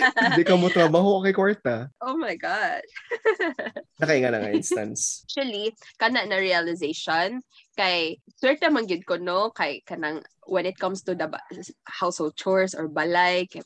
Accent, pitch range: native, 165-215 Hz